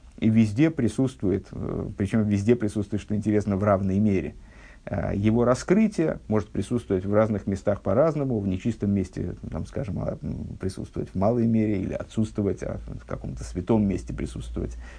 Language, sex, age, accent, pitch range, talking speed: Russian, male, 50-69, native, 100-120 Hz, 145 wpm